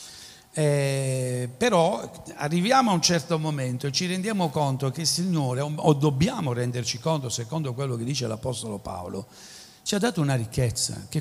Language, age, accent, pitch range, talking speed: Italian, 60-79, native, 130-175 Hz, 160 wpm